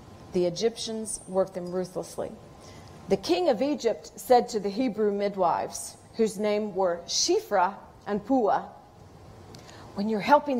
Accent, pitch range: American, 175-240 Hz